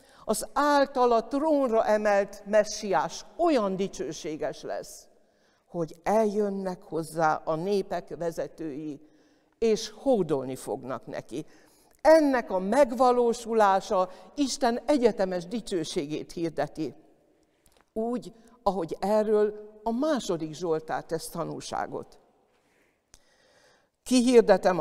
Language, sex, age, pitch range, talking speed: Hungarian, female, 60-79, 175-250 Hz, 80 wpm